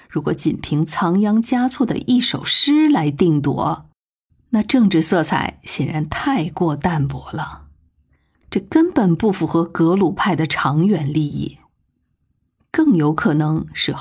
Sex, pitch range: female, 140-205 Hz